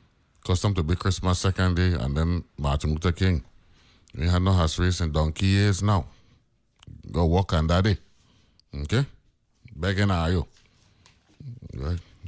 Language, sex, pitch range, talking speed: English, male, 75-95 Hz, 135 wpm